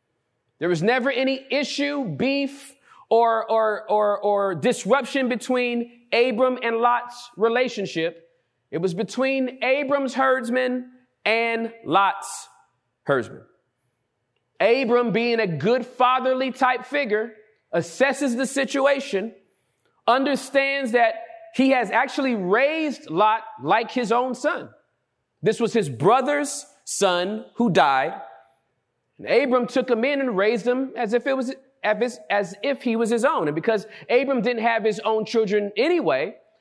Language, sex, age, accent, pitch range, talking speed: English, male, 40-59, American, 205-265 Hz, 130 wpm